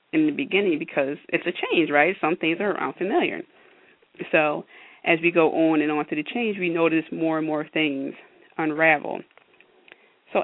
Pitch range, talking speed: 150-185 Hz, 170 wpm